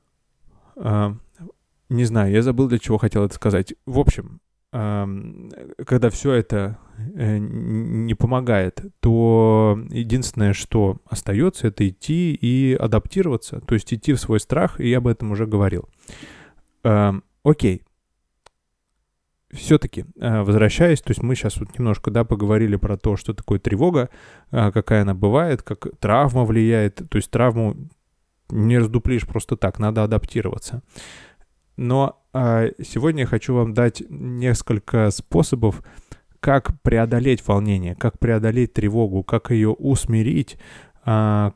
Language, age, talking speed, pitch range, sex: Russian, 20-39, 135 wpm, 105-120 Hz, male